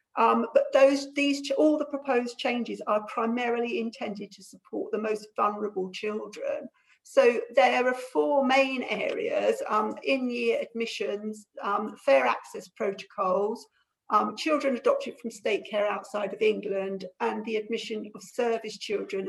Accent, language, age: British, English, 50-69